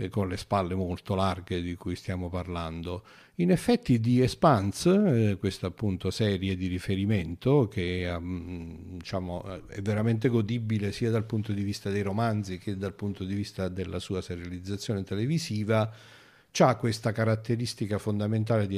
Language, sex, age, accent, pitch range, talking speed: Italian, male, 50-69, native, 95-115 Hz, 135 wpm